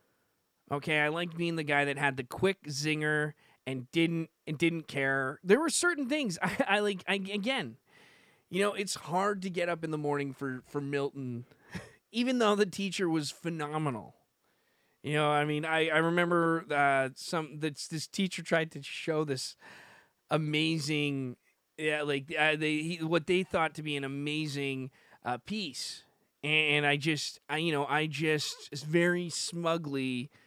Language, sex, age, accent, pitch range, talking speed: English, male, 20-39, American, 135-175 Hz, 170 wpm